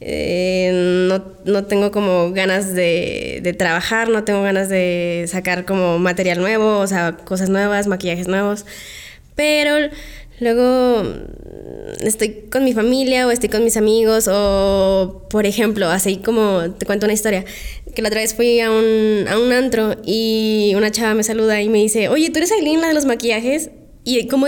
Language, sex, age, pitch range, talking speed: Spanish, female, 20-39, 195-245 Hz, 175 wpm